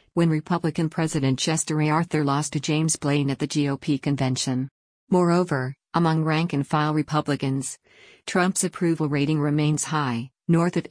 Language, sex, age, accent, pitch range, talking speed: English, female, 50-69, American, 145-165 Hz, 140 wpm